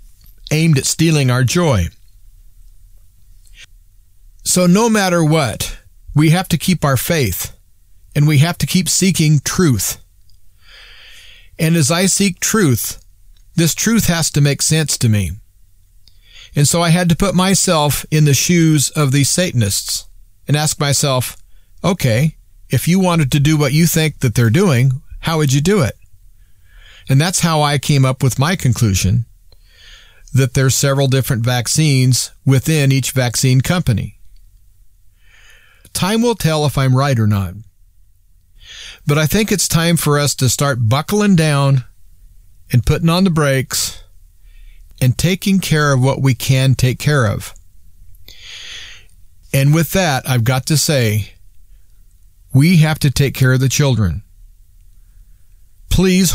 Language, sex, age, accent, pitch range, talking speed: English, male, 40-59, American, 95-155 Hz, 145 wpm